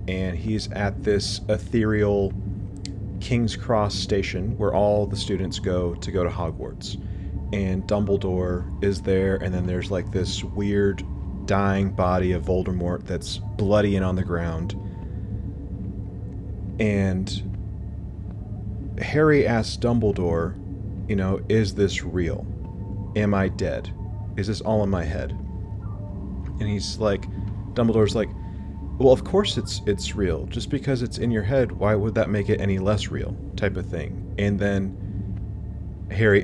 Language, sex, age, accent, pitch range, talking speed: English, male, 30-49, American, 95-105 Hz, 140 wpm